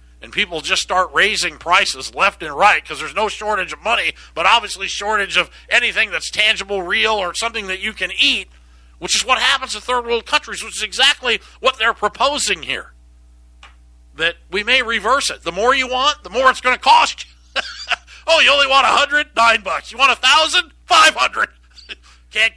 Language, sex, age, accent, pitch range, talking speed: English, male, 50-69, American, 160-265 Hz, 190 wpm